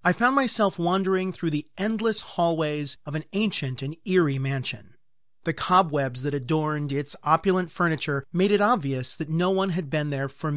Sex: male